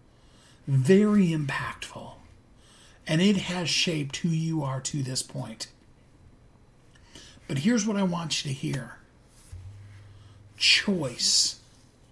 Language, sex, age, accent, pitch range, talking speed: English, male, 50-69, American, 125-165 Hz, 105 wpm